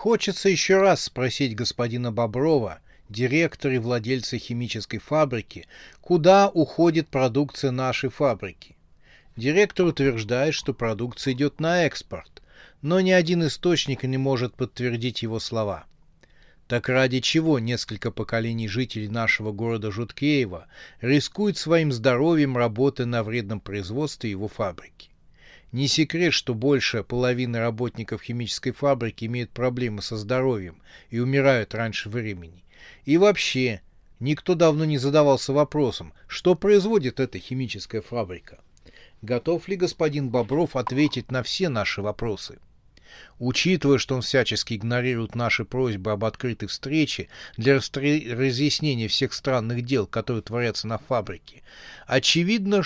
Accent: native